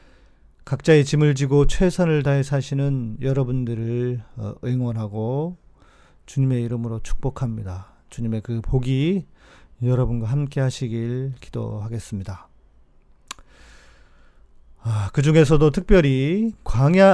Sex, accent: male, native